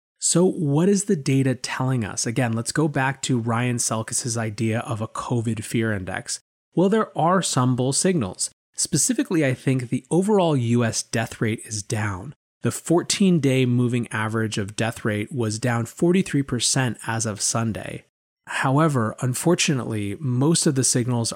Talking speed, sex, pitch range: 155 wpm, male, 110-135 Hz